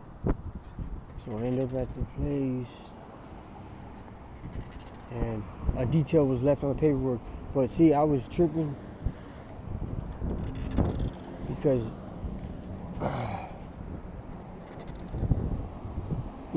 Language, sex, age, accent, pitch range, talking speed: English, male, 20-39, American, 115-170 Hz, 85 wpm